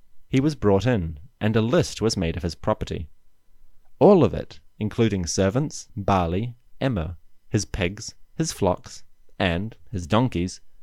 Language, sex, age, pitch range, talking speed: English, male, 30-49, 90-120 Hz, 145 wpm